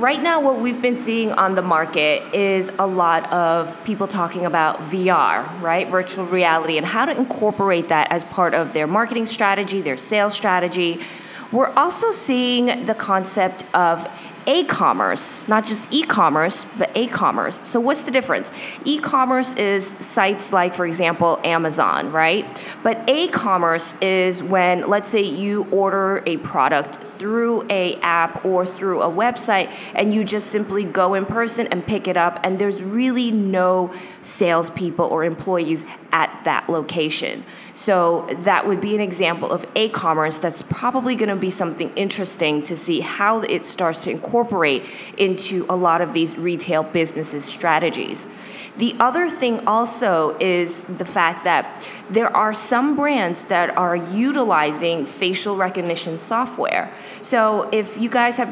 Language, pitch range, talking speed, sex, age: English, 170-220 Hz, 155 wpm, female, 30-49